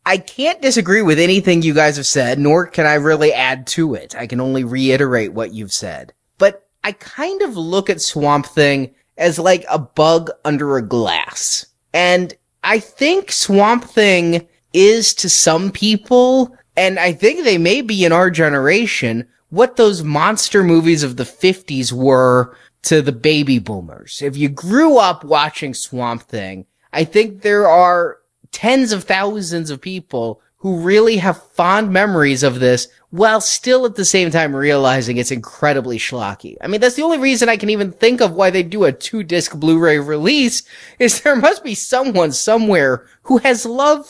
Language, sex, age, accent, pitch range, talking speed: English, male, 20-39, American, 140-210 Hz, 175 wpm